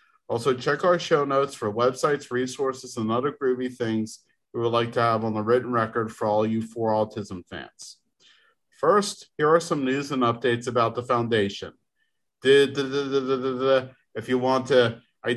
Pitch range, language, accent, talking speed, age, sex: 120-160 Hz, English, American, 195 wpm, 40-59, male